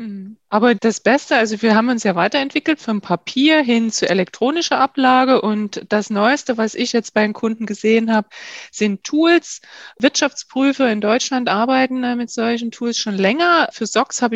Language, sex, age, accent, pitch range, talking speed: German, female, 20-39, German, 210-265 Hz, 165 wpm